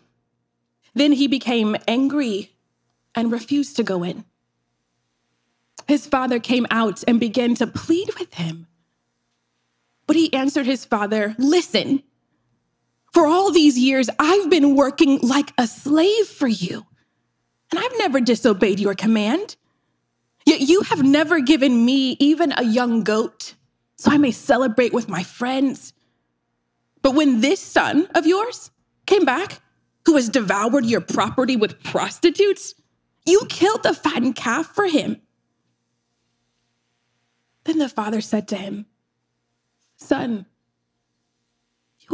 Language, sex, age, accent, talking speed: English, female, 20-39, American, 130 wpm